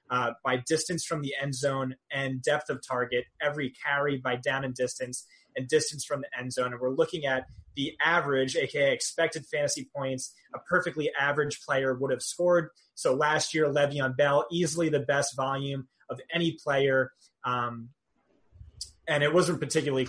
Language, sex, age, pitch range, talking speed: English, male, 20-39, 130-150 Hz, 170 wpm